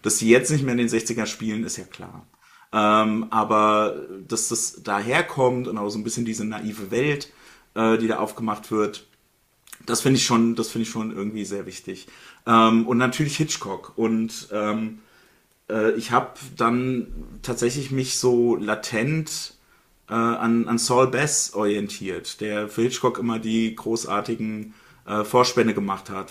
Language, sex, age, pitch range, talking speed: German, male, 30-49, 105-120 Hz, 160 wpm